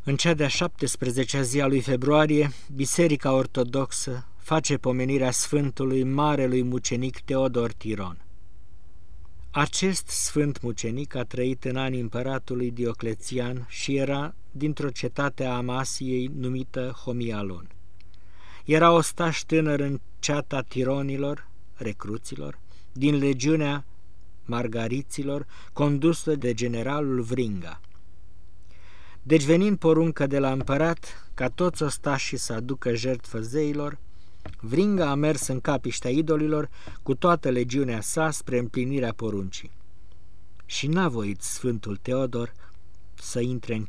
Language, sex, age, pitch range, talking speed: Romanian, male, 50-69, 100-140 Hz, 110 wpm